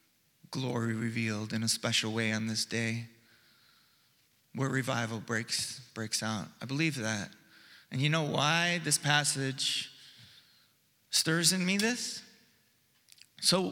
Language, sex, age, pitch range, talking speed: English, male, 30-49, 140-195 Hz, 120 wpm